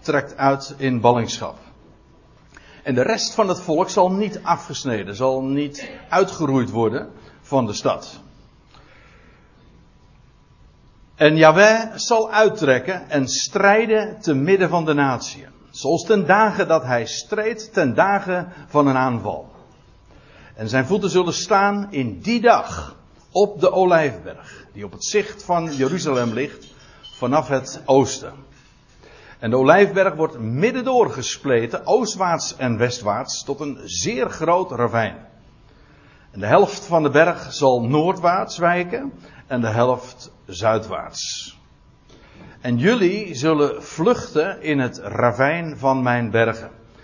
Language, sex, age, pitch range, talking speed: Dutch, male, 60-79, 125-185 Hz, 130 wpm